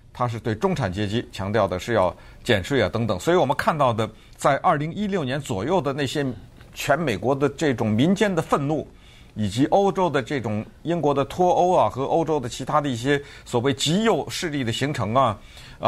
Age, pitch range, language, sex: 50-69, 115-155 Hz, Chinese, male